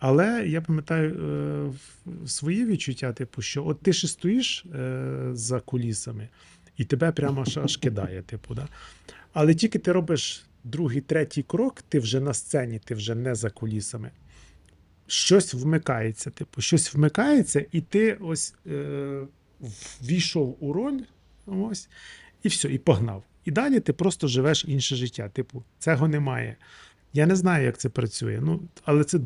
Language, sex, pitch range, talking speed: Ukrainian, male, 120-165 Hz, 155 wpm